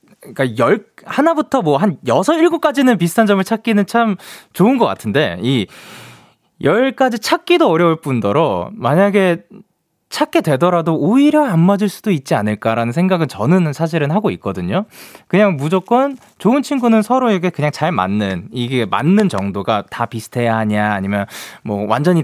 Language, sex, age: Korean, male, 20-39